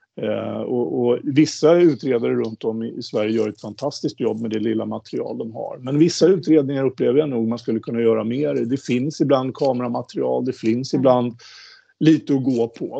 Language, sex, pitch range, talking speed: Swedish, male, 115-145 Hz, 185 wpm